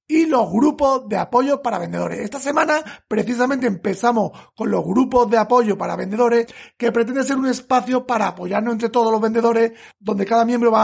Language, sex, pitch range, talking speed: Spanish, male, 220-260 Hz, 185 wpm